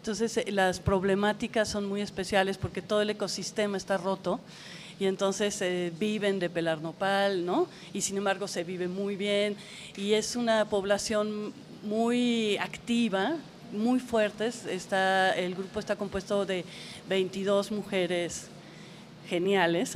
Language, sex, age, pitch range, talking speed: Spanish, female, 40-59, 180-205 Hz, 130 wpm